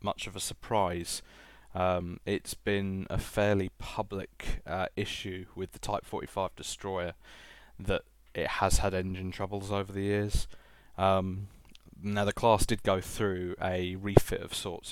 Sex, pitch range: male, 90-100 Hz